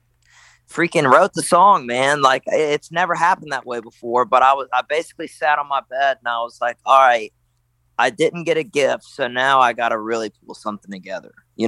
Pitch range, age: 115-140 Hz, 30-49